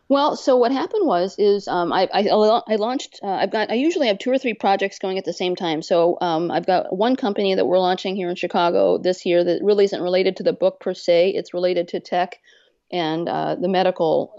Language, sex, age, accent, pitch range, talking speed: English, female, 40-59, American, 165-200 Hz, 240 wpm